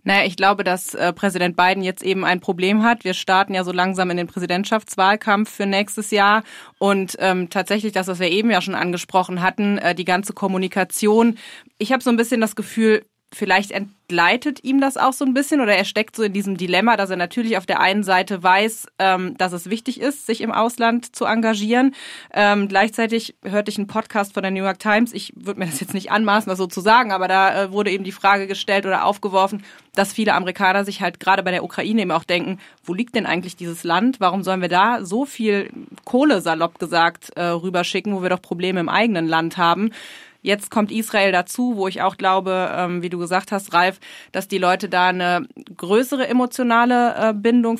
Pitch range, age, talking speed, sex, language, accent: 185-220 Hz, 20-39, 205 wpm, female, German, German